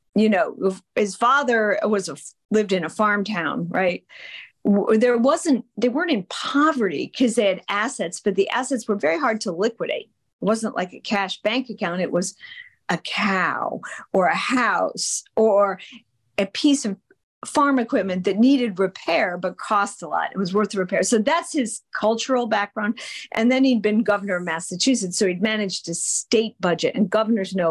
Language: English